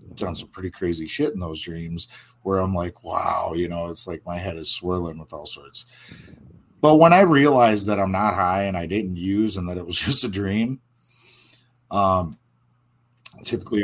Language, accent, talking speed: English, American, 190 wpm